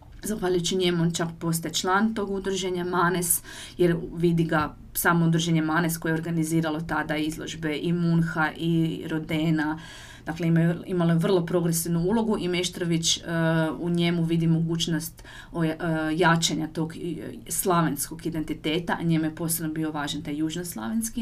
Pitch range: 160-175 Hz